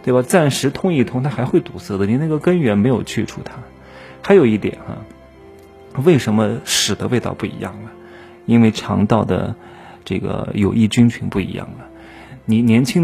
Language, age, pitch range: Chinese, 20-39, 100-135 Hz